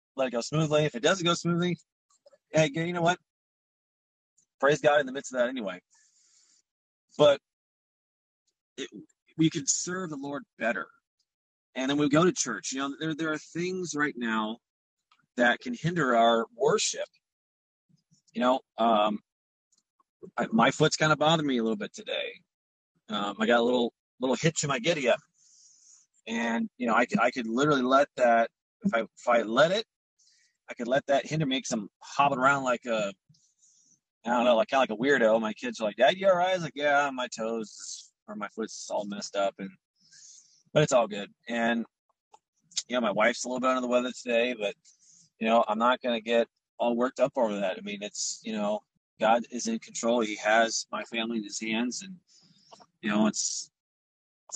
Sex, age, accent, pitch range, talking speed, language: male, 30-49, American, 115-165 Hz, 195 wpm, English